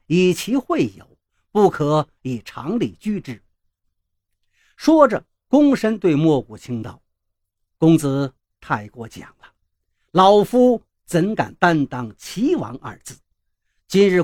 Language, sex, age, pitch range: Chinese, male, 50-69, 145-225 Hz